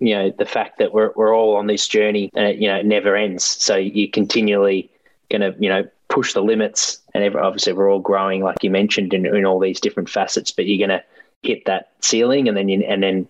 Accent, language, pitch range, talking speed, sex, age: Australian, English, 95-110 Hz, 250 wpm, male, 20-39